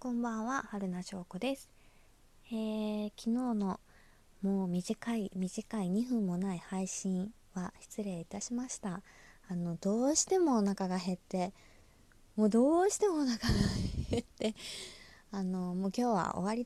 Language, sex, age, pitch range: Japanese, female, 20-39, 175-230 Hz